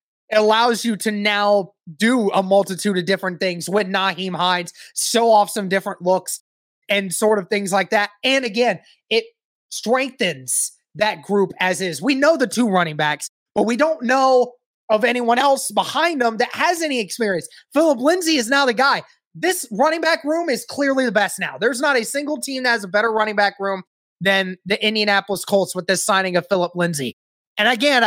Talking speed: 195 wpm